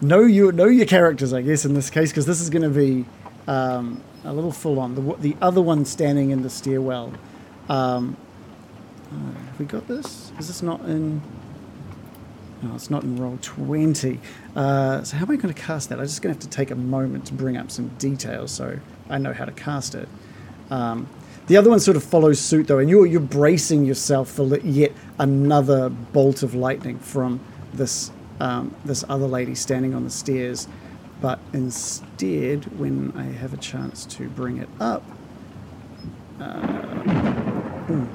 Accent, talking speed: Australian, 180 wpm